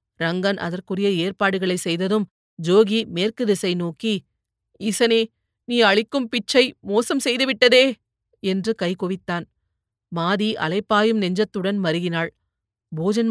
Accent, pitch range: native, 170-210 Hz